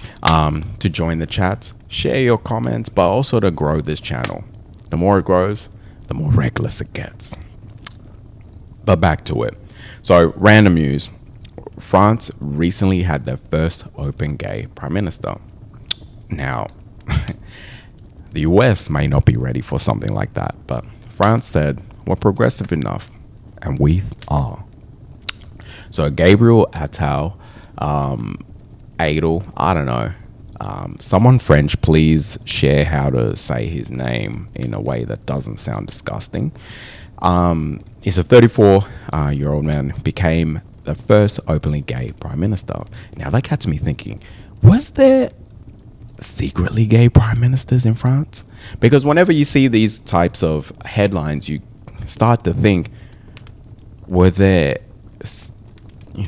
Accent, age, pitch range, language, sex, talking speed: American, 30-49, 80-115 Hz, English, male, 130 wpm